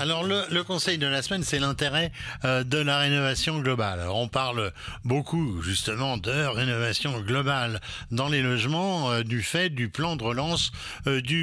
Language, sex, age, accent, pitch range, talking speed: French, male, 60-79, French, 115-150 Hz, 180 wpm